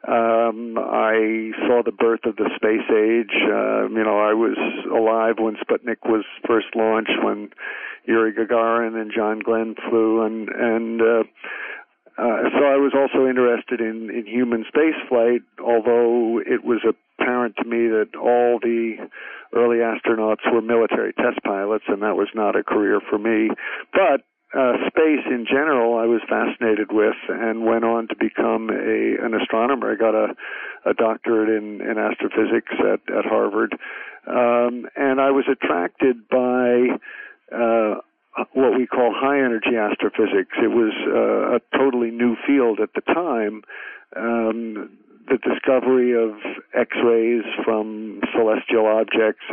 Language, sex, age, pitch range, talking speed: English, male, 50-69, 110-125 Hz, 145 wpm